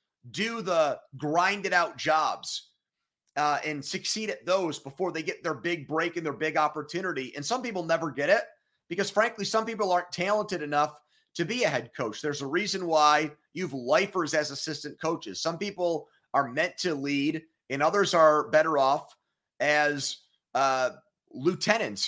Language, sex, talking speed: English, male, 165 wpm